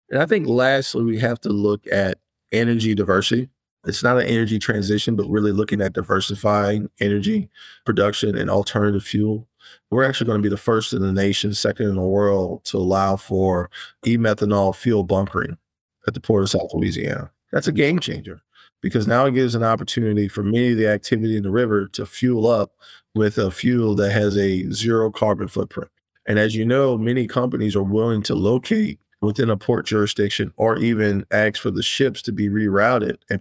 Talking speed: 190 wpm